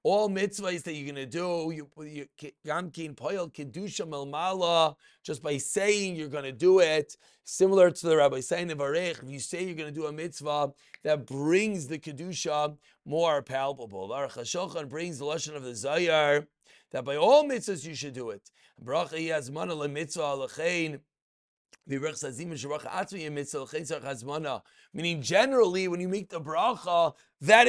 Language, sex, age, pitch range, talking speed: English, male, 30-49, 150-185 Hz, 135 wpm